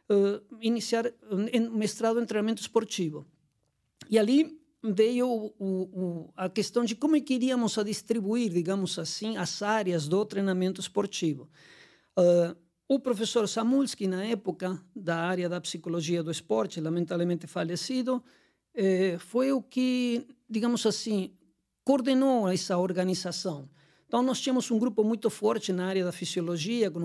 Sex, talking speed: male, 140 wpm